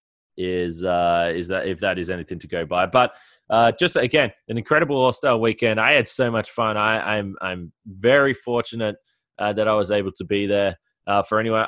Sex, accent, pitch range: male, Australian, 105-145 Hz